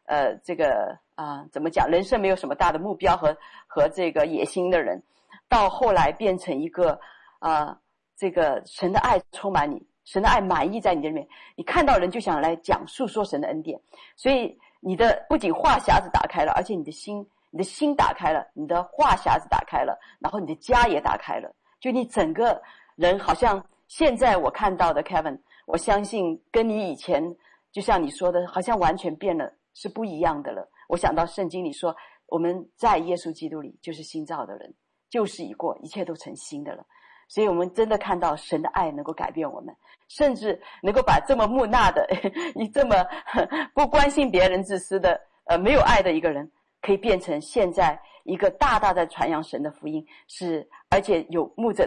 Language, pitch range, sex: Chinese, 170-250 Hz, female